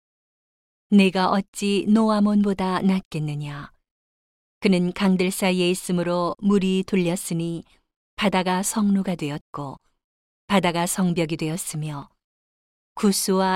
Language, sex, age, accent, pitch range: Korean, female, 40-59, native, 170-200 Hz